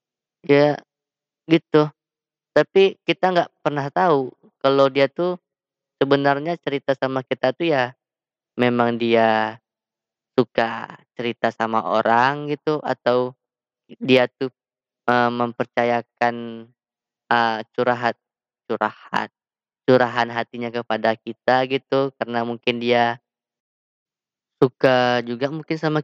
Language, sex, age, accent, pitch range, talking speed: Indonesian, female, 20-39, native, 120-140 Hz, 100 wpm